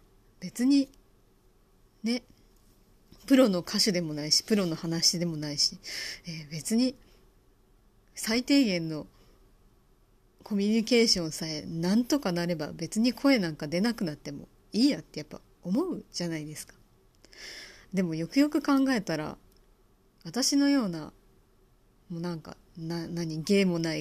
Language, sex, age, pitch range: Japanese, female, 30-49, 160-220 Hz